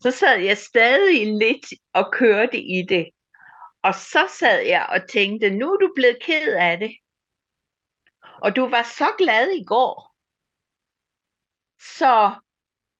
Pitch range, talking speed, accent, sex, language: 190-270 Hz, 140 wpm, native, female, Danish